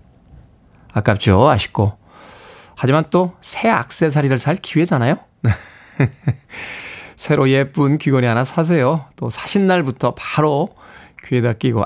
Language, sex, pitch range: Korean, male, 125-185 Hz